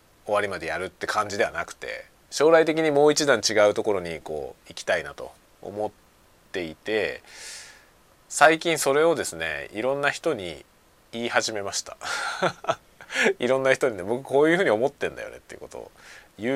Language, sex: Japanese, male